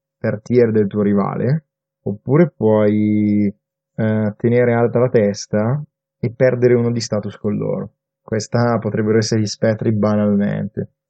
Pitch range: 105-125 Hz